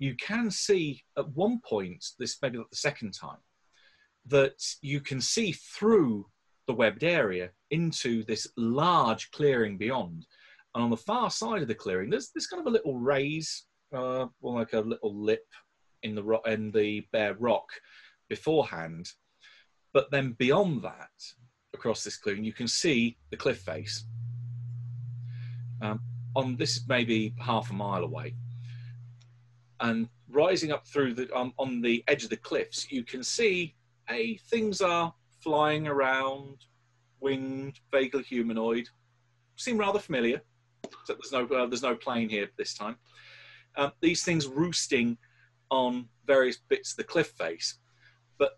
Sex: male